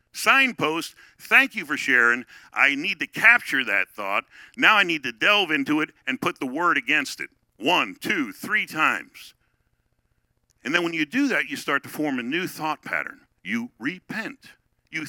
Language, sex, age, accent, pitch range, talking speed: English, male, 50-69, American, 115-150 Hz, 180 wpm